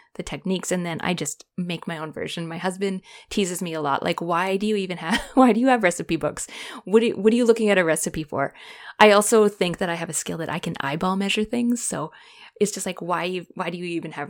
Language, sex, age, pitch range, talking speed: English, female, 20-39, 170-230 Hz, 255 wpm